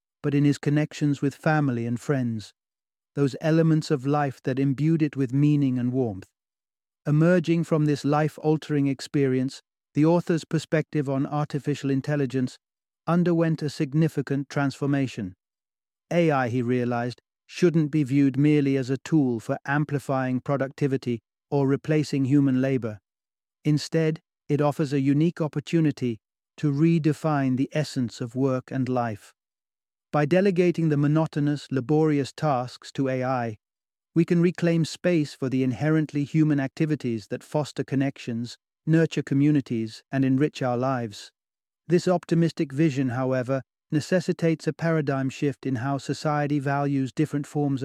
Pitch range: 130-155 Hz